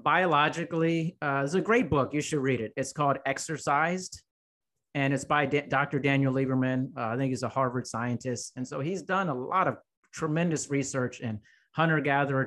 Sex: male